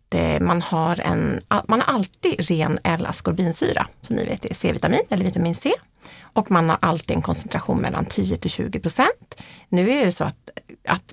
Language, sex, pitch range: Swedish, female, 160-215 Hz